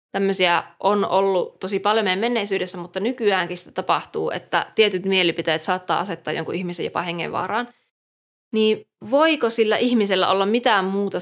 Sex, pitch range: female, 175-210 Hz